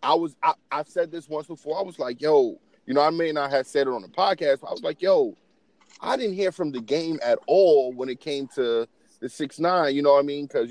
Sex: male